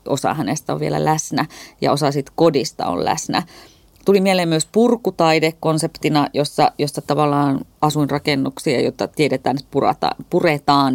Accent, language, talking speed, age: native, Finnish, 130 wpm, 30-49